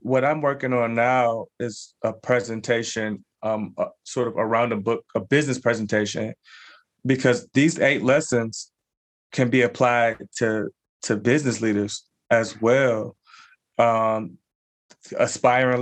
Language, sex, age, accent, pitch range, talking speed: English, male, 20-39, American, 115-135 Hz, 130 wpm